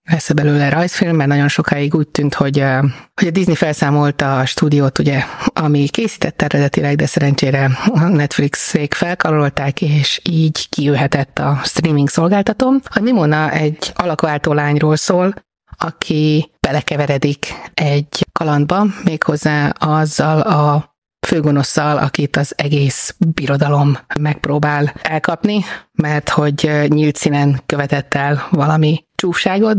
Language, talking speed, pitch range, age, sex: Hungarian, 120 wpm, 140-165 Hz, 30-49, female